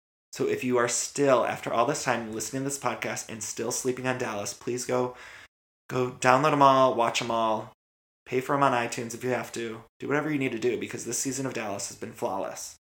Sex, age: male, 20-39